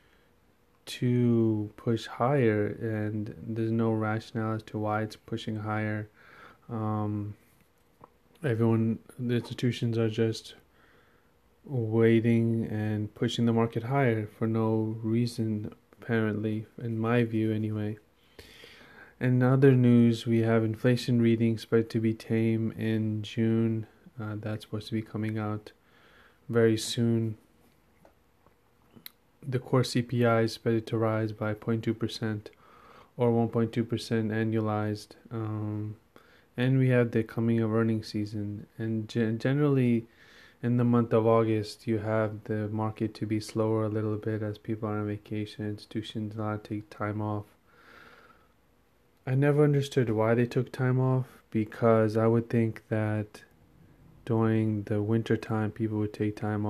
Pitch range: 110-115 Hz